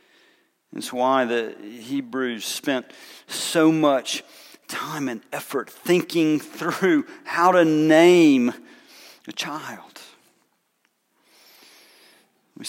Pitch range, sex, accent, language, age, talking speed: 185-255 Hz, male, American, English, 50-69, 85 wpm